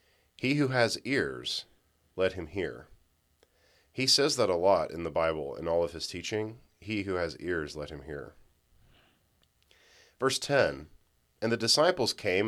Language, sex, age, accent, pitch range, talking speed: English, male, 40-59, American, 80-110 Hz, 160 wpm